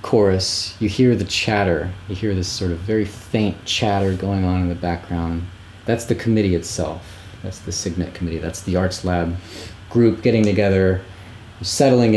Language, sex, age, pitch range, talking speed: English, male, 30-49, 90-105 Hz, 170 wpm